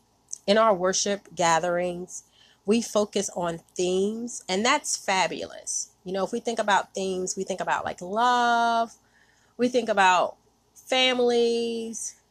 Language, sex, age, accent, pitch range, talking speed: English, female, 30-49, American, 185-240 Hz, 130 wpm